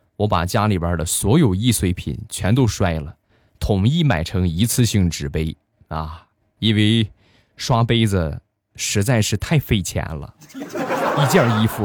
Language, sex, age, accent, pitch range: Chinese, male, 20-39, native, 90-120 Hz